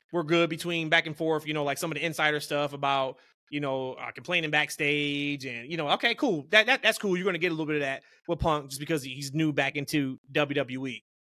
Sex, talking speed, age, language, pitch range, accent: male, 250 wpm, 20-39, English, 140-170 Hz, American